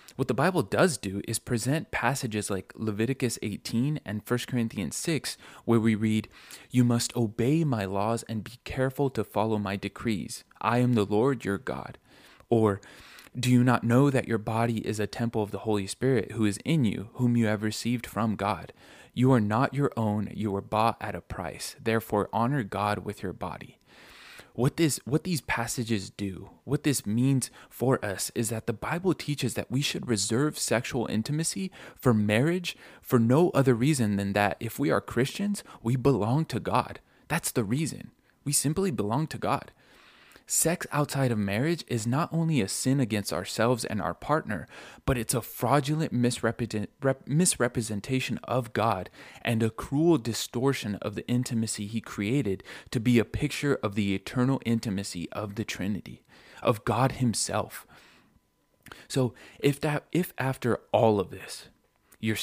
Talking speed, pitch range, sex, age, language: 170 wpm, 110-135 Hz, male, 20-39, English